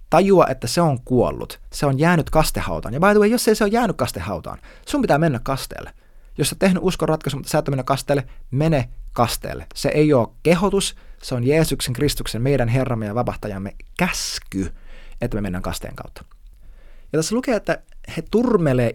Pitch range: 115-165 Hz